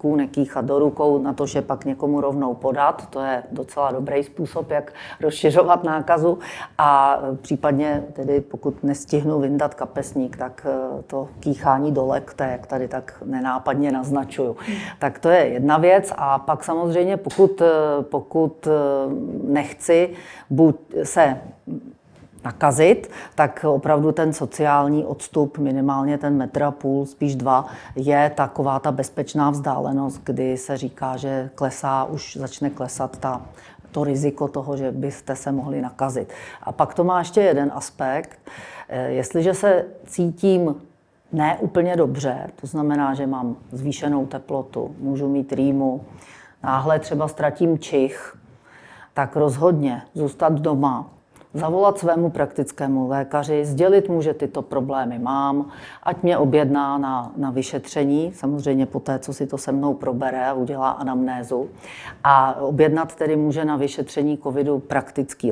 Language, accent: Czech, native